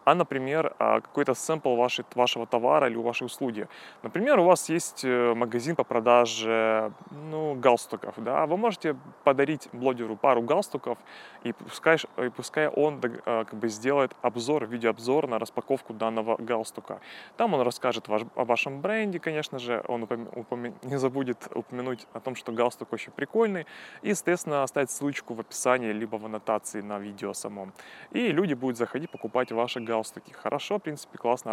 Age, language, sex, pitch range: 20-39, Russian, male, 115-140 Hz